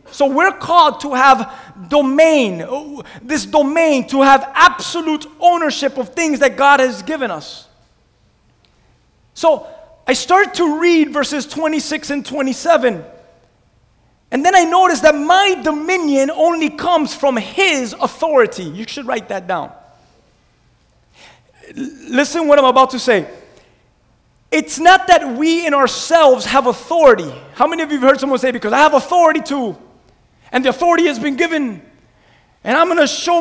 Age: 30-49